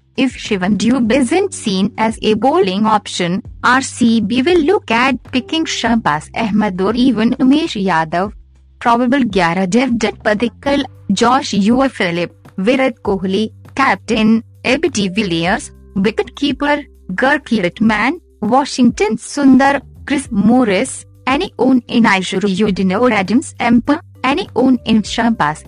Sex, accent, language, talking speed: female, native, Hindi, 110 wpm